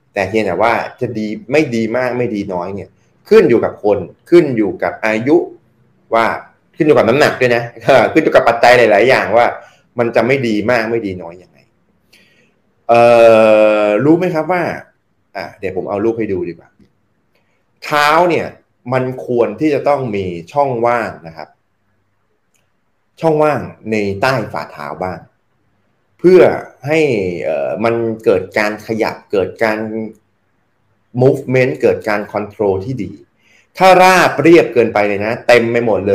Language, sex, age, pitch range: Thai, male, 20-39, 105-130 Hz